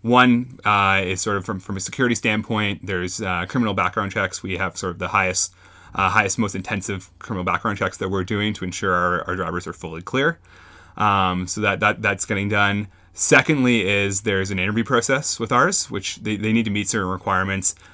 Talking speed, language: 205 wpm, English